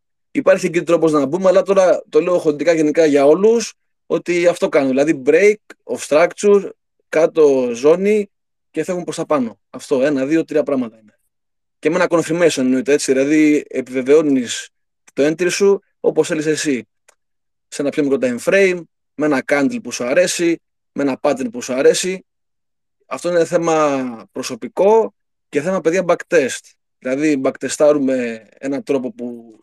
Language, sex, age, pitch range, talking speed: Greek, male, 20-39, 135-185 Hz, 160 wpm